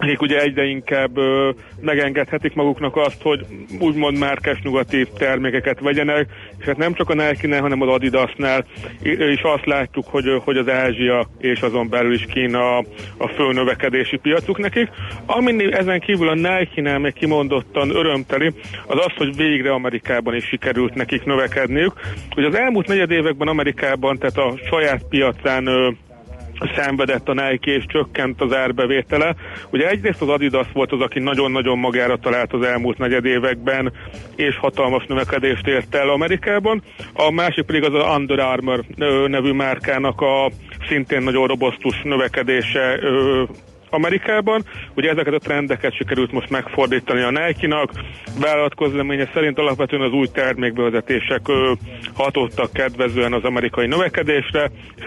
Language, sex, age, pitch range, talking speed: Hungarian, male, 40-59, 125-150 Hz, 145 wpm